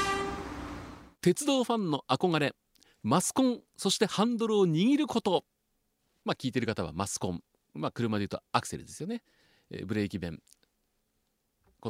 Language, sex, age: Japanese, male, 40-59